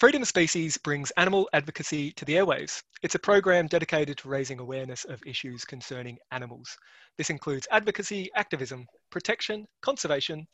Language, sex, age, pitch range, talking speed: English, male, 20-39, 130-170 Hz, 150 wpm